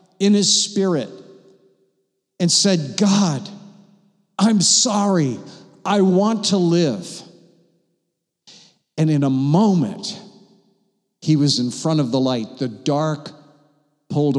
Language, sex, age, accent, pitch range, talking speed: English, male, 50-69, American, 130-185 Hz, 110 wpm